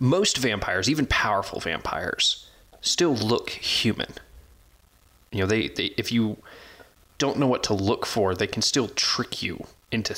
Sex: male